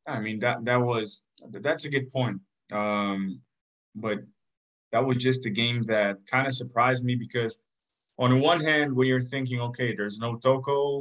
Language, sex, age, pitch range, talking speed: English, male, 20-39, 110-130 Hz, 185 wpm